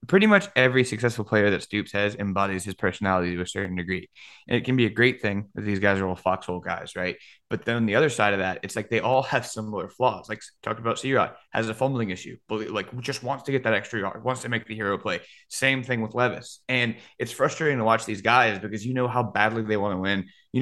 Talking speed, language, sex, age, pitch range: 255 wpm, English, male, 20-39, 105-125 Hz